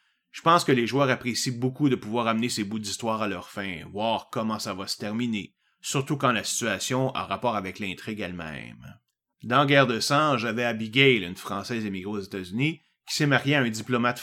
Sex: male